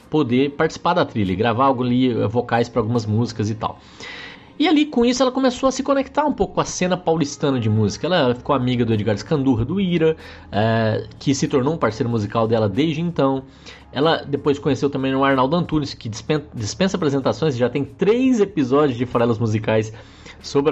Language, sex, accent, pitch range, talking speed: Portuguese, male, Brazilian, 115-160 Hz, 200 wpm